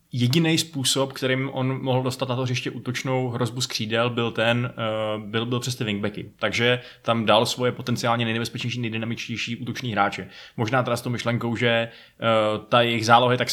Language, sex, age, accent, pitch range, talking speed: Czech, male, 20-39, native, 115-135 Hz, 180 wpm